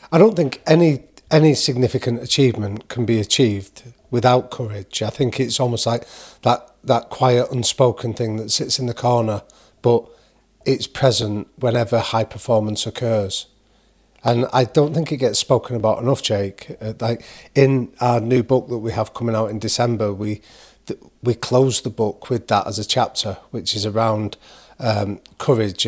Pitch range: 110-125 Hz